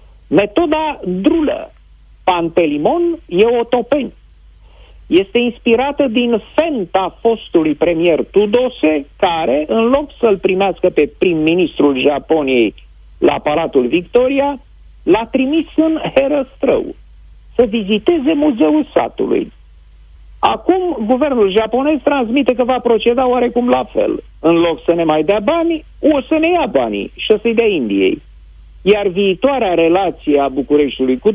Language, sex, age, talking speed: Romanian, male, 50-69, 125 wpm